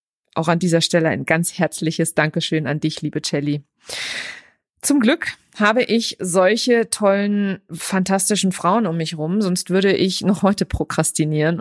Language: German